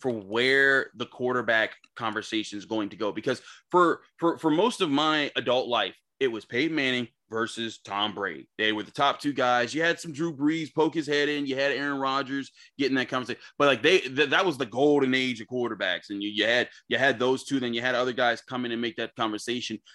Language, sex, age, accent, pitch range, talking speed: English, male, 30-49, American, 120-160 Hz, 230 wpm